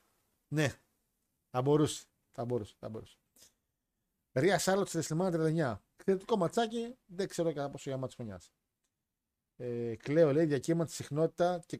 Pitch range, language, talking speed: 140-185 Hz, Greek, 125 wpm